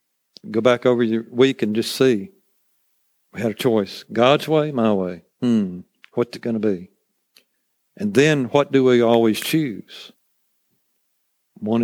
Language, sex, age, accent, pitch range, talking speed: English, male, 50-69, American, 110-135 Hz, 150 wpm